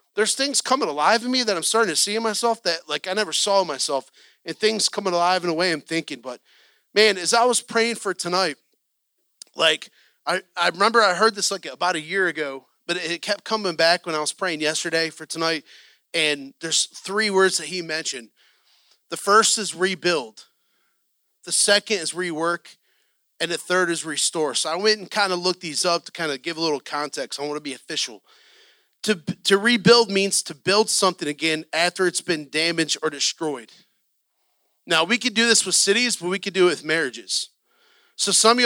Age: 30-49